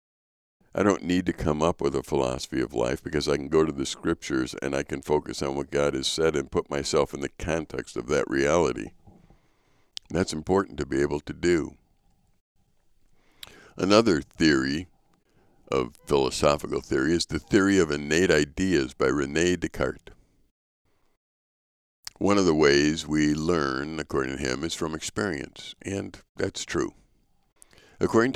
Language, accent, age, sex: English, American, 60-79, male